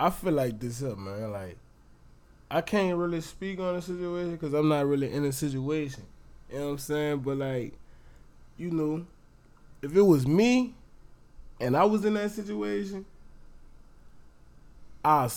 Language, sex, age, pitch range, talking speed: English, male, 20-39, 115-170 Hz, 160 wpm